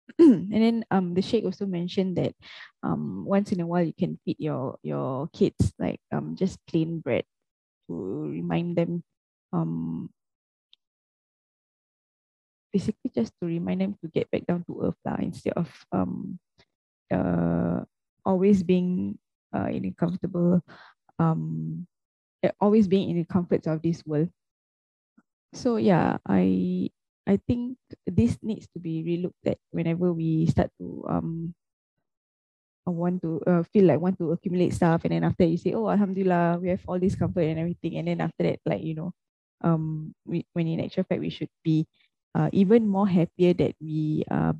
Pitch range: 150-185 Hz